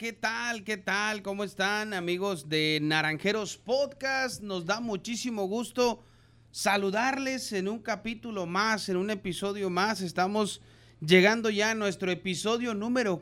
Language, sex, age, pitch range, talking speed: Spanish, male, 30-49, 185-225 Hz, 135 wpm